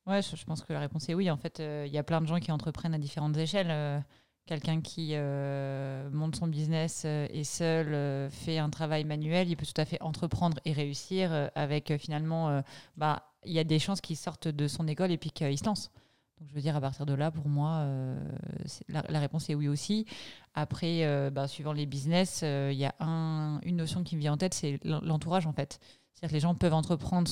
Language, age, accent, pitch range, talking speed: French, 30-49, French, 150-170 Hz, 245 wpm